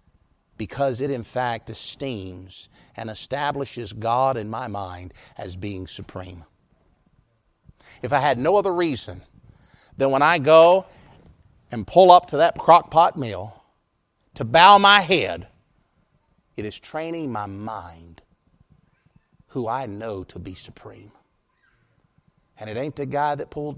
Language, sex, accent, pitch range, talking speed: English, male, American, 105-155 Hz, 135 wpm